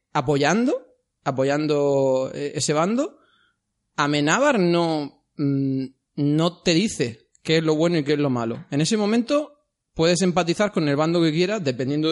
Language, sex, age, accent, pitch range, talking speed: Spanish, male, 30-49, Spanish, 135-175 Hz, 145 wpm